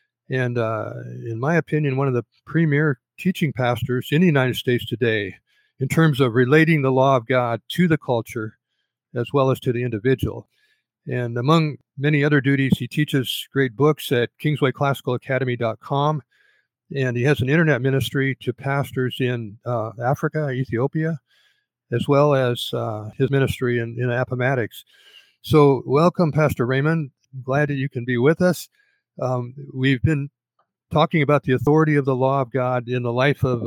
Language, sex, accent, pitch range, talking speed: English, male, American, 125-150 Hz, 165 wpm